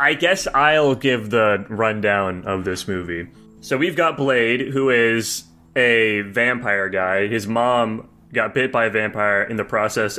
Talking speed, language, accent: 165 wpm, English, American